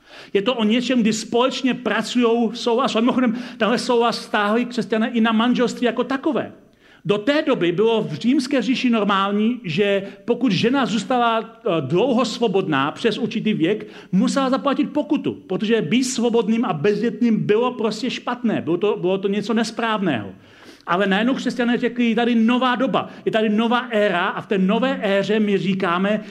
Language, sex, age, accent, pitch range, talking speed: Czech, male, 40-59, native, 195-240 Hz, 160 wpm